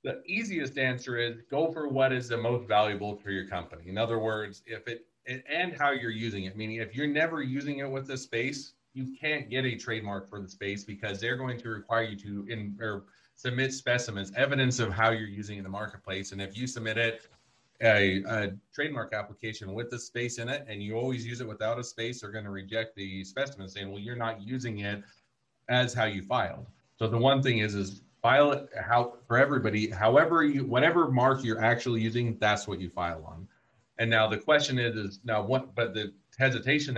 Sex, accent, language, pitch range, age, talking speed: male, American, English, 100-125 Hz, 30-49, 215 wpm